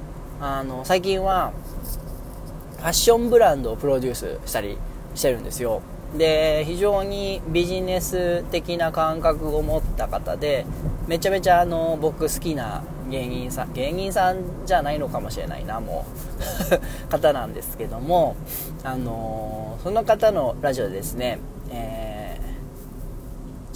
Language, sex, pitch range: Japanese, male, 140-200 Hz